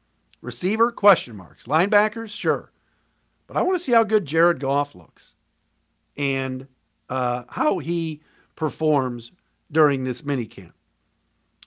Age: 50-69